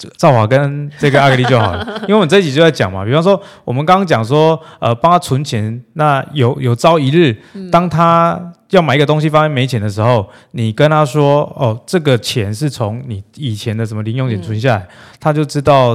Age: 20-39